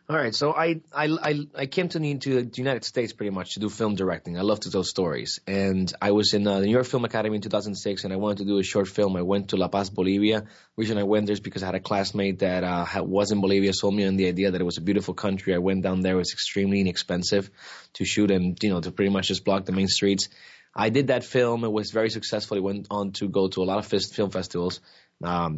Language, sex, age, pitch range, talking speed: English, male, 20-39, 95-105 Hz, 270 wpm